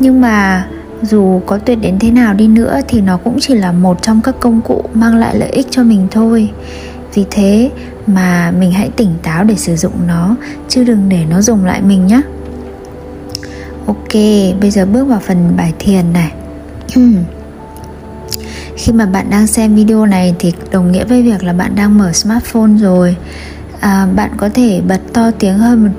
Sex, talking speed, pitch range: female, 190 wpm, 175-225 Hz